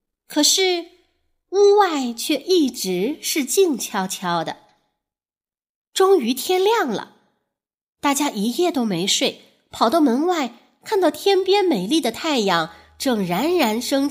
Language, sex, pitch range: Chinese, female, 195-315 Hz